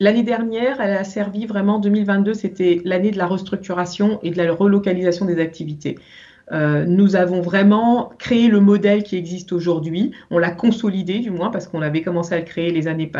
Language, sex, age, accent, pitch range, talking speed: French, female, 40-59, French, 160-200 Hz, 190 wpm